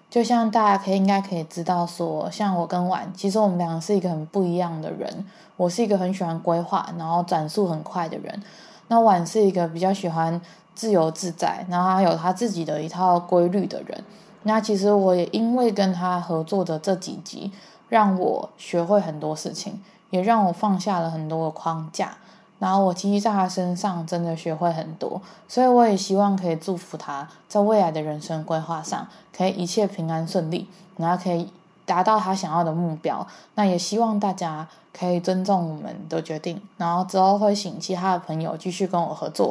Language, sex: Chinese, female